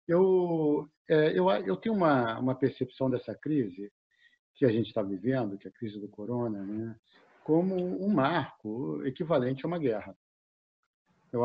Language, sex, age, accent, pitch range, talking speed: Portuguese, male, 50-69, Brazilian, 125-165 Hz, 150 wpm